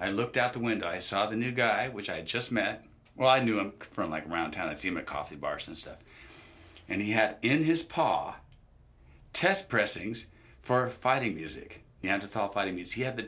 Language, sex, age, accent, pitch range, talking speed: English, male, 40-59, American, 90-115 Hz, 215 wpm